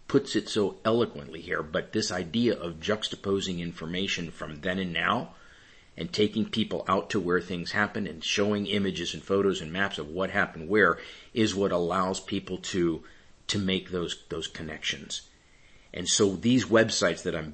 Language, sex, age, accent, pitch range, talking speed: English, male, 50-69, American, 80-100 Hz, 170 wpm